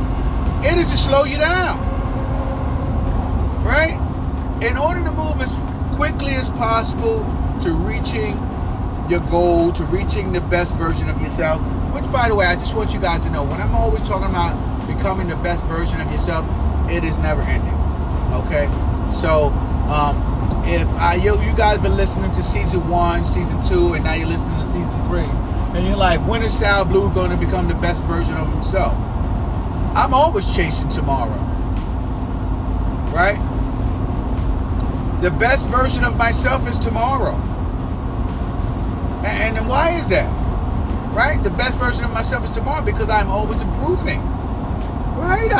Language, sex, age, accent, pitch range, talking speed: English, male, 30-49, American, 80-90 Hz, 155 wpm